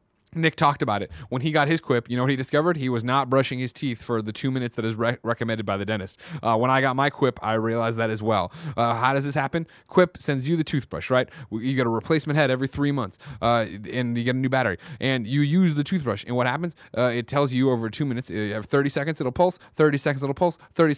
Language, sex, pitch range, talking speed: English, male, 120-155 Hz, 265 wpm